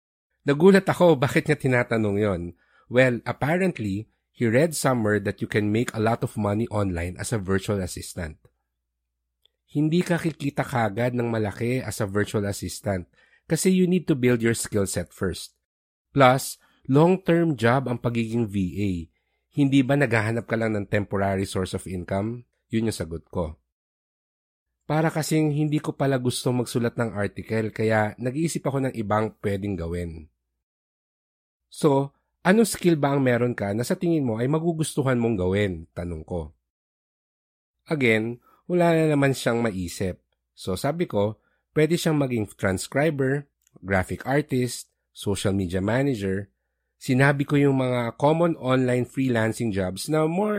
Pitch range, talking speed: 95-140 Hz, 145 wpm